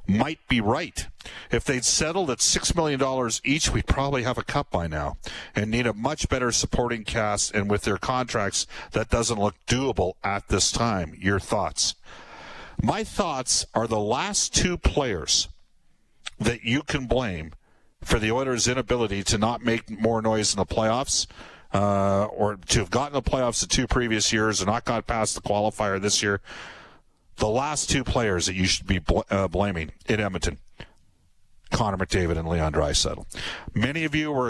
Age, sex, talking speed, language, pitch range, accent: 50-69, male, 175 wpm, English, 95-125 Hz, American